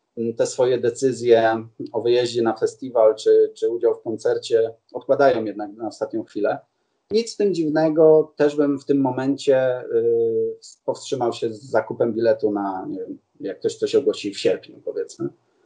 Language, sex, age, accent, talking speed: Polish, male, 30-49, native, 165 wpm